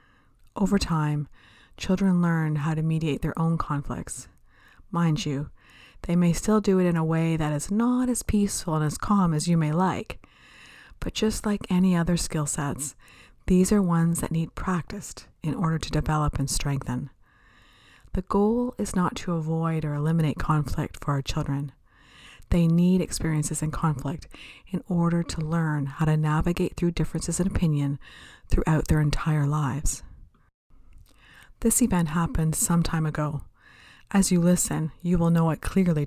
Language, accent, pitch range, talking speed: English, American, 150-180 Hz, 160 wpm